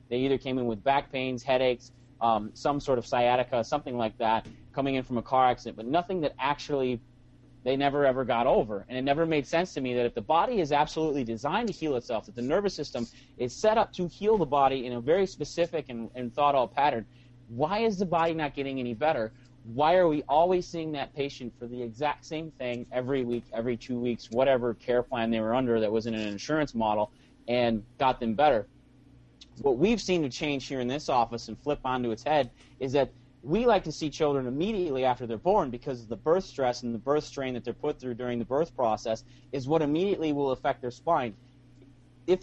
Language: English